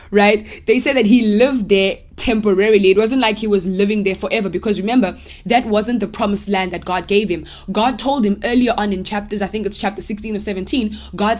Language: English